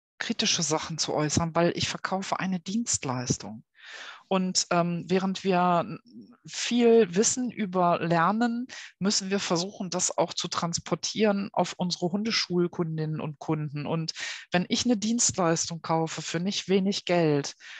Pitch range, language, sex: 165-210 Hz, German, female